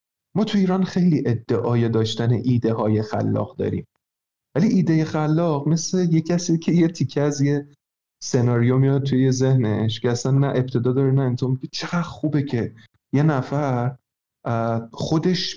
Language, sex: Persian, male